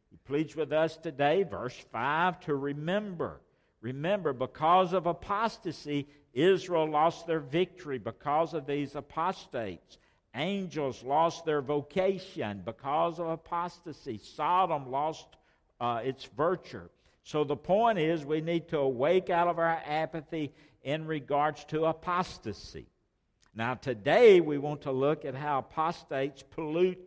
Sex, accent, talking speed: male, American, 130 wpm